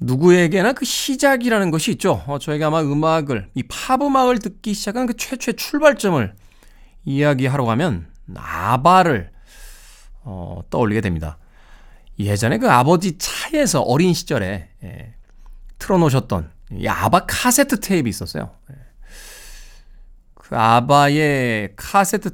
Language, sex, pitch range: Korean, male, 105-165 Hz